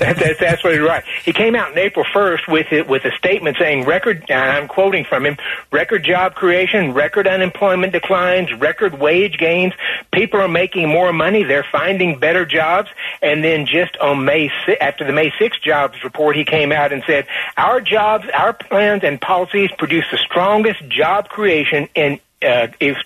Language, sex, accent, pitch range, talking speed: English, male, American, 155-205 Hz, 185 wpm